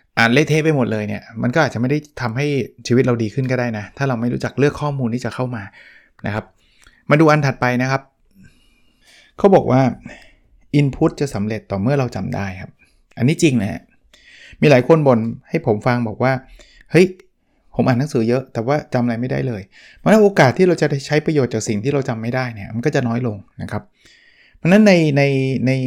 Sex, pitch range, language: male, 115-145 Hz, Thai